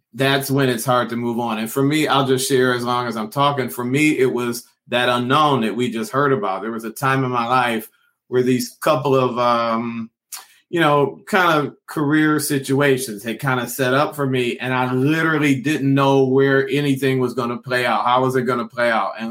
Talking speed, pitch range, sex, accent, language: 230 wpm, 125-145 Hz, male, American, English